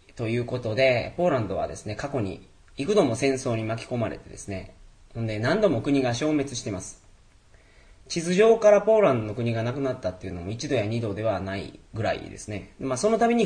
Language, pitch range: Japanese, 95-140 Hz